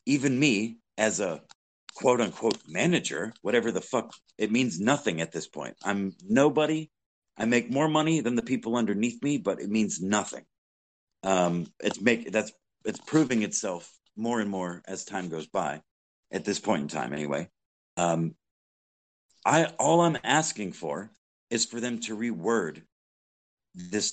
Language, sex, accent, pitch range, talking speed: English, male, American, 95-145 Hz, 155 wpm